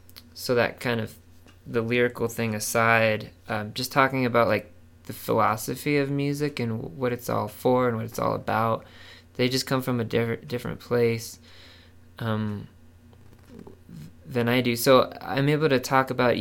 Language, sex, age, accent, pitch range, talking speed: English, male, 20-39, American, 90-125 Hz, 165 wpm